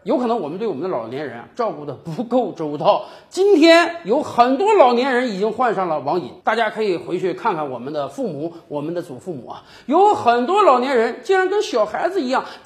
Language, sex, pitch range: Chinese, male, 185-305 Hz